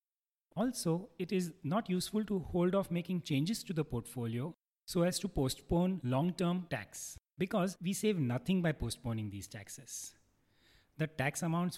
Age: 40-59